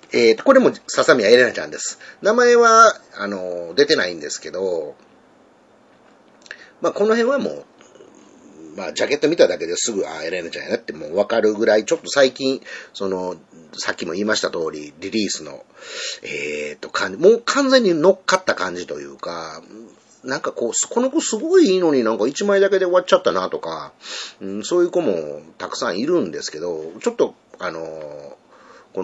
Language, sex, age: Japanese, male, 40-59